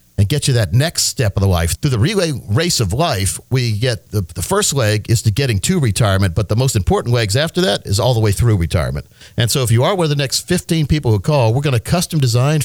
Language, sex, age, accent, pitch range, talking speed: English, male, 50-69, American, 110-150 Hz, 270 wpm